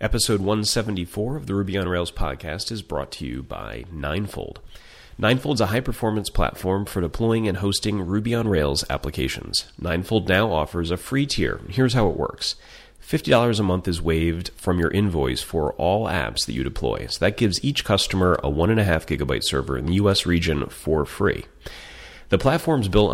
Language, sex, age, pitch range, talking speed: English, male, 30-49, 85-105 Hz, 180 wpm